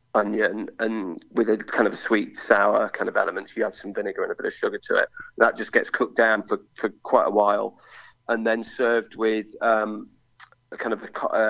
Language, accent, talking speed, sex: English, British, 225 wpm, male